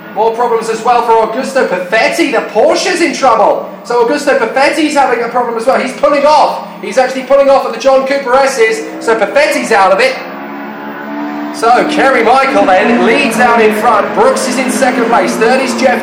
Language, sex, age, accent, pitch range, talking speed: English, male, 30-49, British, 185-235 Hz, 195 wpm